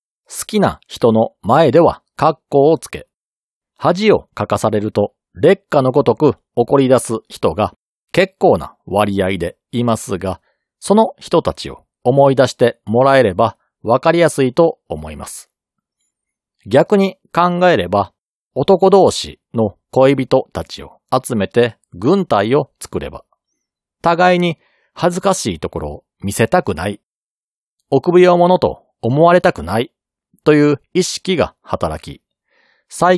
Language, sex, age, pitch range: Japanese, male, 40-59, 110-170 Hz